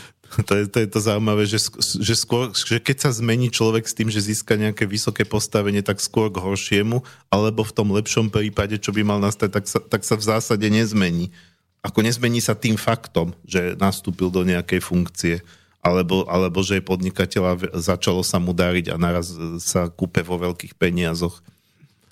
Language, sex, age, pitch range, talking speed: Slovak, male, 40-59, 90-110 Hz, 175 wpm